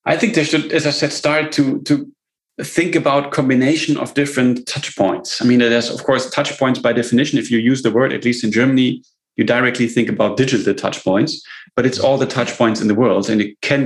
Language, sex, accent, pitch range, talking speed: English, male, German, 110-130 Hz, 235 wpm